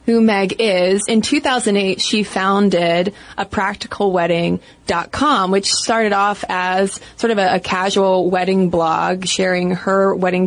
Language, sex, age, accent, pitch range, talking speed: English, female, 20-39, American, 180-225 Hz, 140 wpm